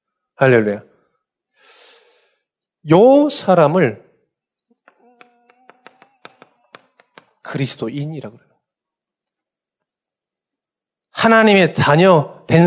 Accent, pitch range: native, 135-195 Hz